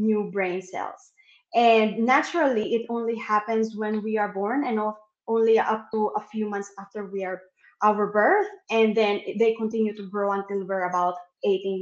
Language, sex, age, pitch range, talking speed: English, female, 20-39, 195-235 Hz, 185 wpm